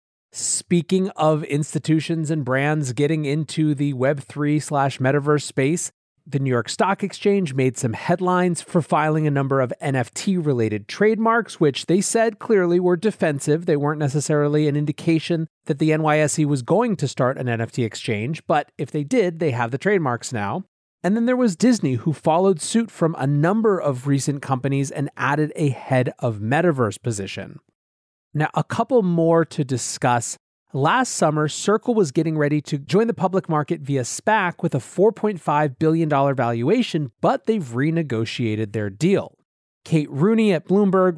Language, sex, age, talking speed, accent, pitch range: English, male, 30-49, 160 wpm, American, 135-180 Hz